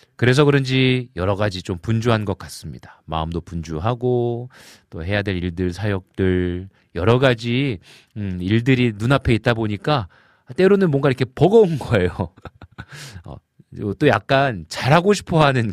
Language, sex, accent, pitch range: Korean, male, native, 95-140 Hz